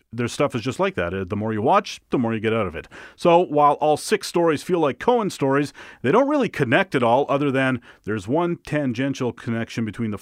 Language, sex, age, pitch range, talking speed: English, male, 30-49, 105-145 Hz, 235 wpm